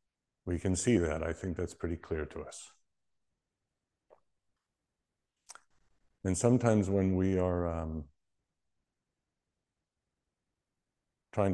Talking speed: 95 wpm